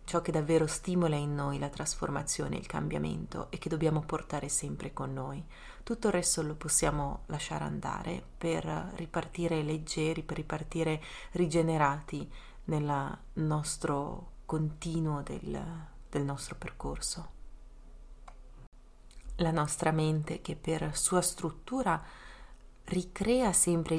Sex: female